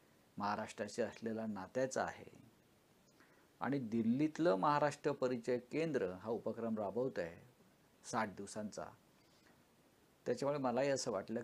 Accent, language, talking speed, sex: native, Marathi, 95 wpm, male